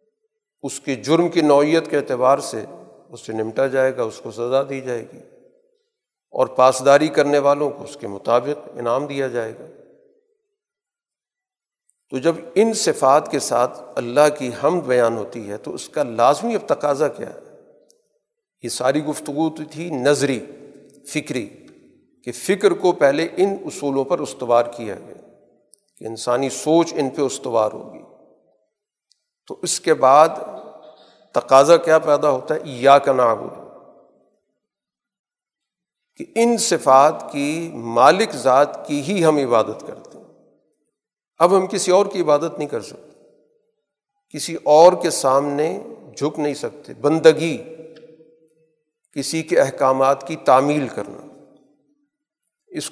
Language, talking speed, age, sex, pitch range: Urdu, 135 wpm, 50-69, male, 135-200 Hz